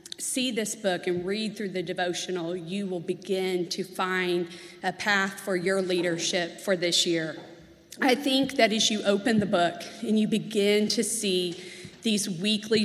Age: 40-59